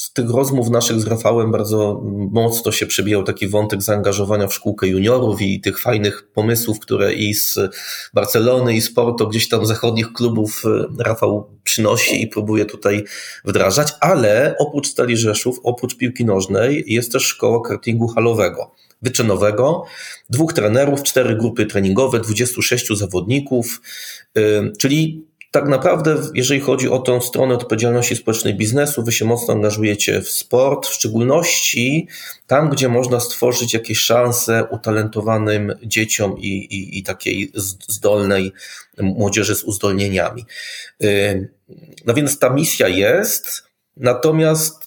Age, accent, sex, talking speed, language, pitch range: 30-49, native, male, 130 wpm, Polish, 105-125 Hz